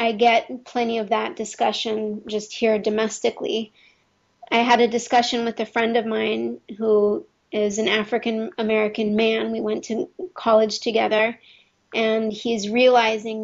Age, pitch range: 30-49, 215-240 Hz